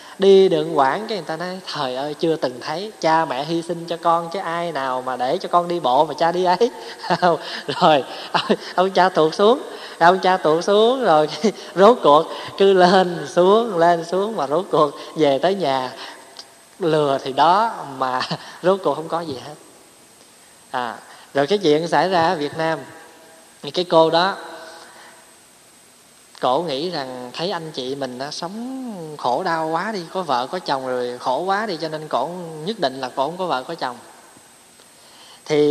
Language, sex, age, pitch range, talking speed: Vietnamese, male, 20-39, 145-180 Hz, 185 wpm